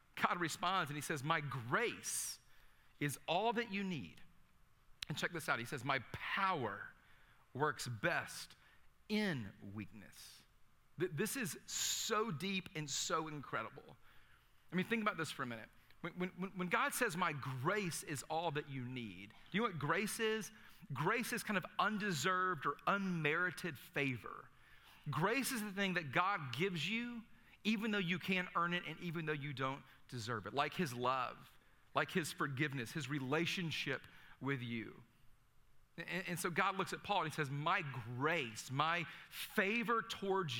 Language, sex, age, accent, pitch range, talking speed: English, male, 40-59, American, 130-185 Hz, 165 wpm